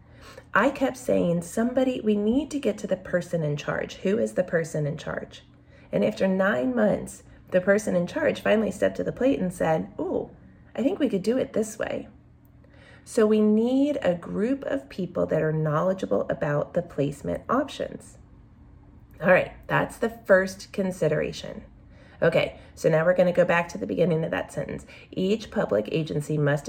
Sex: female